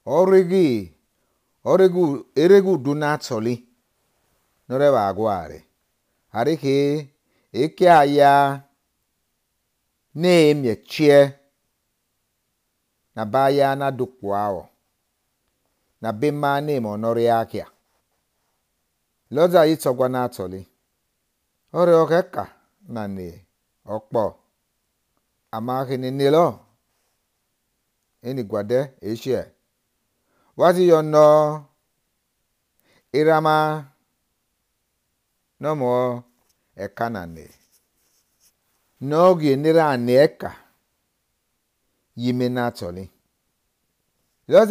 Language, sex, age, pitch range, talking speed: English, male, 50-69, 115-150 Hz, 50 wpm